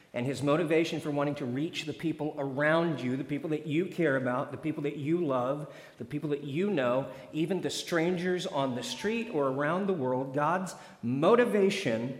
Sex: male